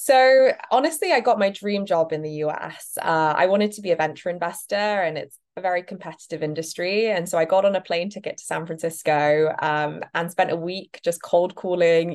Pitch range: 160-210 Hz